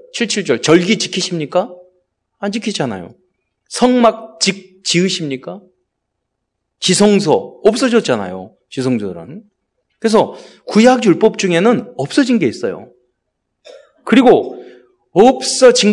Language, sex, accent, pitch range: Korean, male, native, 165-245 Hz